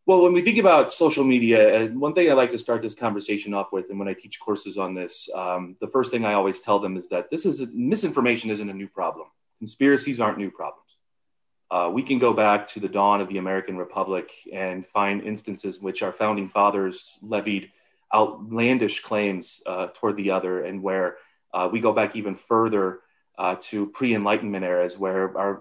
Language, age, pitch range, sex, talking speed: English, 30-49, 95-115 Hz, male, 205 wpm